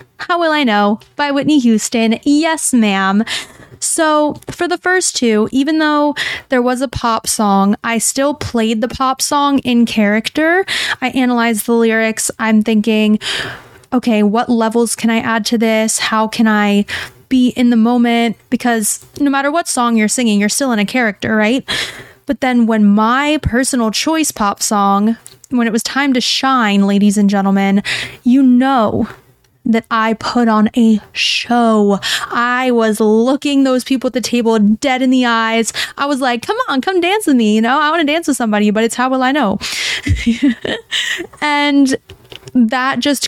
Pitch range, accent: 220-270 Hz, American